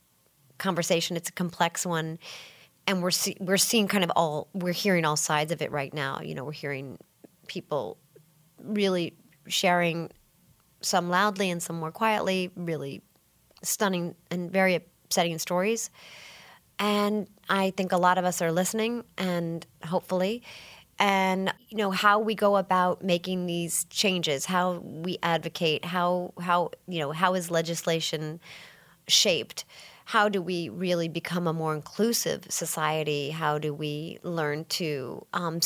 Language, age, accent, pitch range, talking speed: English, 40-59, American, 165-200 Hz, 145 wpm